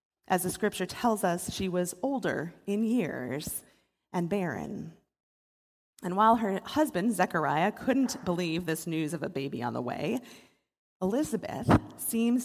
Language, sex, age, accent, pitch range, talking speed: English, female, 30-49, American, 175-215 Hz, 140 wpm